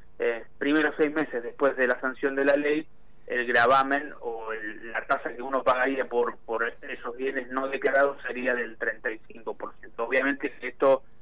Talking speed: 165 wpm